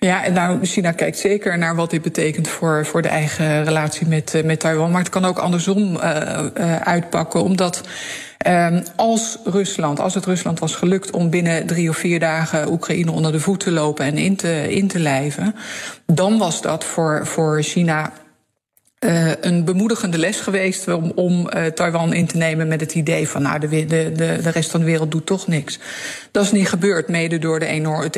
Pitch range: 160-200 Hz